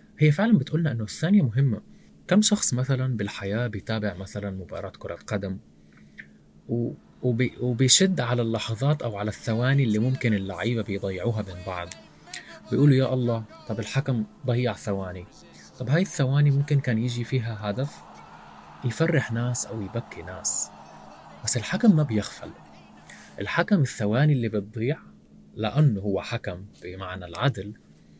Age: 20-39